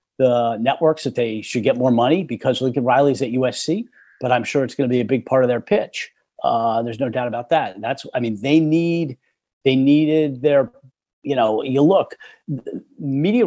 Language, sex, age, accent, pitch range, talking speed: English, male, 40-59, American, 125-145 Hz, 205 wpm